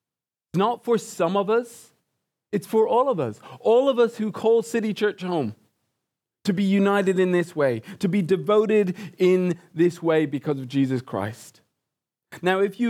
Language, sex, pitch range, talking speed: English, male, 155-195 Hz, 170 wpm